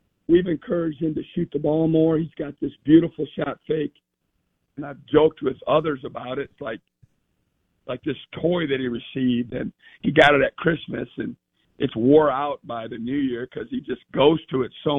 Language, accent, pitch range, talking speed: English, American, 135-160 Hz, 200 wpm